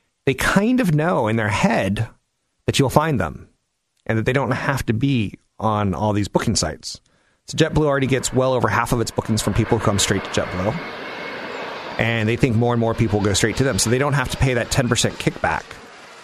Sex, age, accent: male, 30-49, American